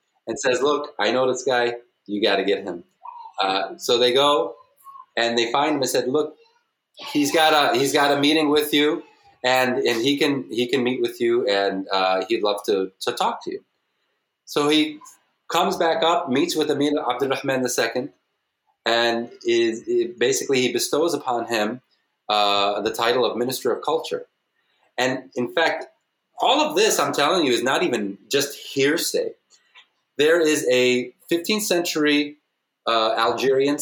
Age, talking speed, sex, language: 30-49, 170 wpm, male, English